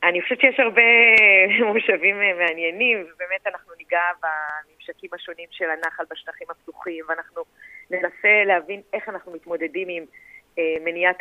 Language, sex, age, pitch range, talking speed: Hebrew, female, 30-49, 170-195 Hz, 125 wpm